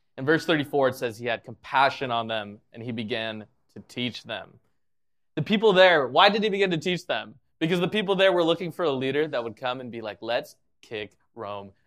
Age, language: 20-39, English